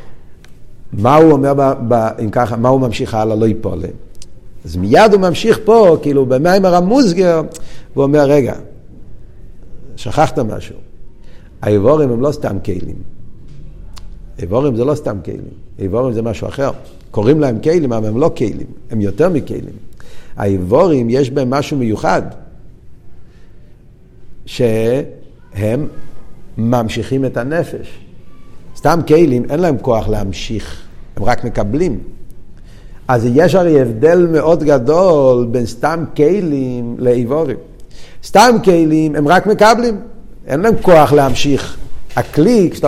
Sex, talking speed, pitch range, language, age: male, 125 wpm, 120-195 Hz, Hebrew, 50-69